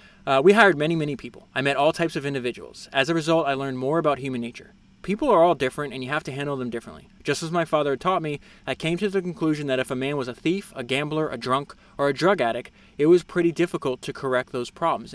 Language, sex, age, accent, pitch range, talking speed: English, male, 20-39, American, 130-165 Hz, 265 wpm